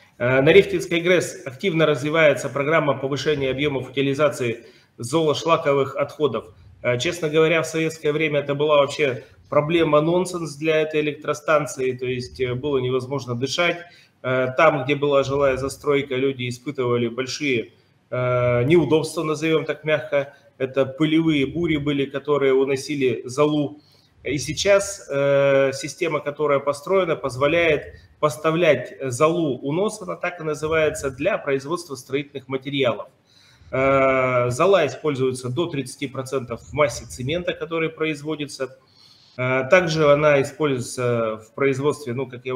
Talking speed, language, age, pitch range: 115 wpm, Russian, 30-49, 135-155 Hz